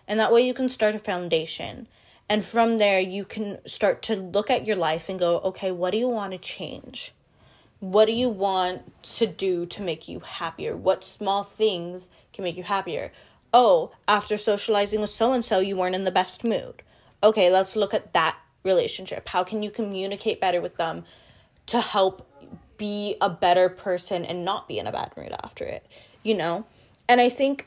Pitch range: 180-220 Hz